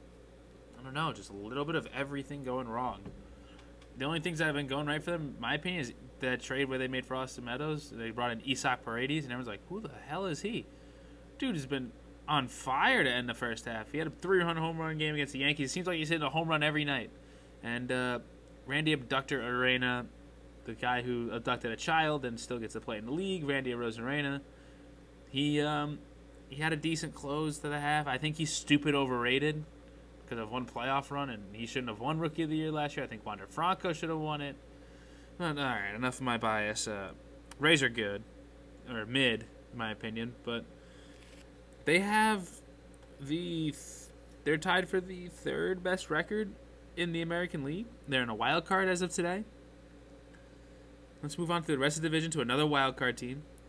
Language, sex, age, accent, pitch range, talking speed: English, male, 20-39, American, 125-155 Hz, 205 wpm